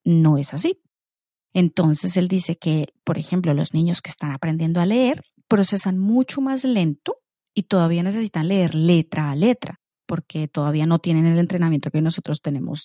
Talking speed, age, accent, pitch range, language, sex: 170 wpm, 30-49, Colombian, 165-220 Hz, Spanish, female